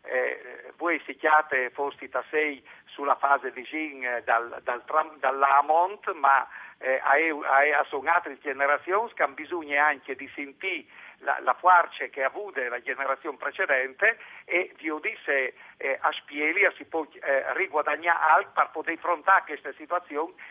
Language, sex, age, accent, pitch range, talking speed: Italian, male, 50-69, native, 130-170 Hz, 160 wpm